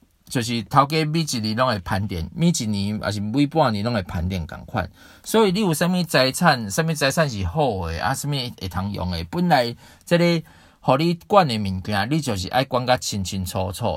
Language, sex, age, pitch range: Chinese, male, 40-59, 105-155 Hz